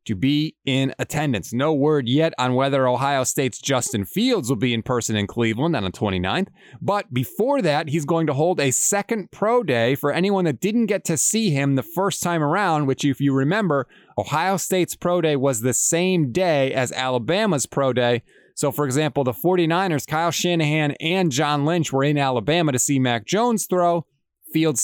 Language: English